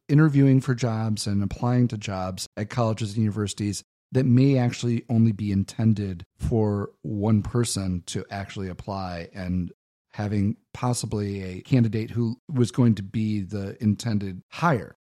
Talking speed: 145 wpm